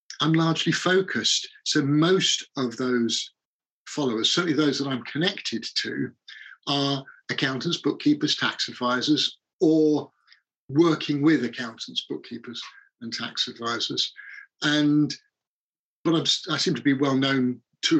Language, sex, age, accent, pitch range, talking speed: English, male, 50-69, British, 120-150 Hz, 125 wpm